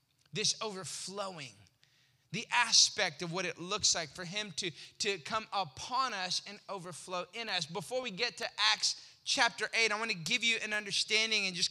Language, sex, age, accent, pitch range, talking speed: English, male, 20-39, American, 200-270 Hz, 185 wpm